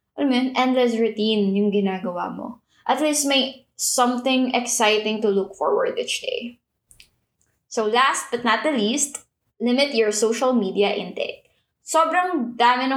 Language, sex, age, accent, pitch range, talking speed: English, female, 20-39, Filipino, 205-260 Hz, 145 wpm